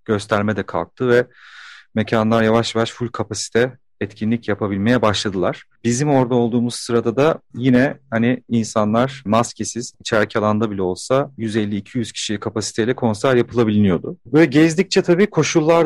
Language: Turkish